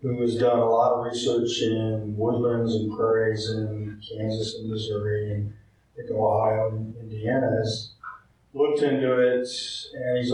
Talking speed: 145 wpm